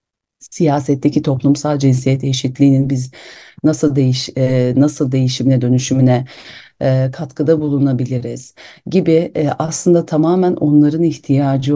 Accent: native